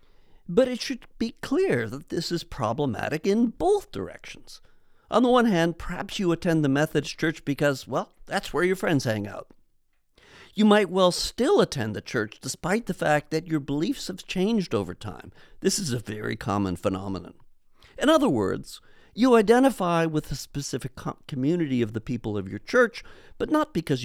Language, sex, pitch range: English, male, 110-180 Hz